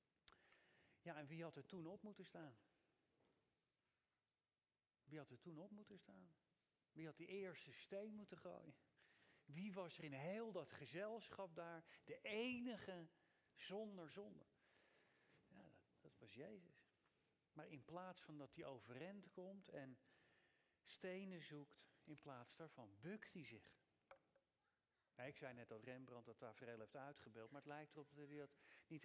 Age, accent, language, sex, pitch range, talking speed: 40-59, Dutch, Dutch, male, 145-190 Hz, 155 wpm